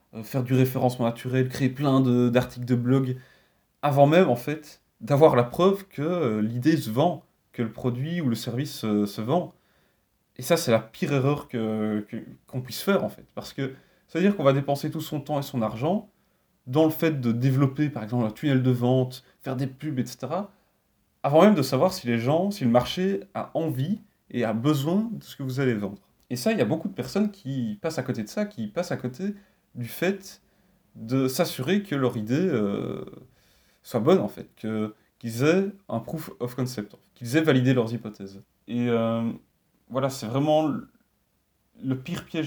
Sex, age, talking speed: male, 30-49, 210 wpm